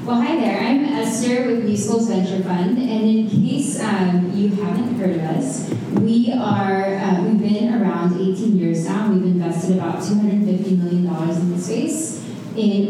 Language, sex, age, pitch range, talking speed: English, female, 20-39, 180-215 Hz, 175 wpm